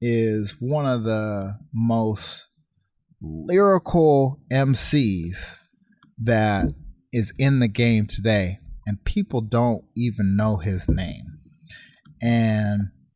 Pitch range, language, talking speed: 105-145 Hz, English, 95 wpm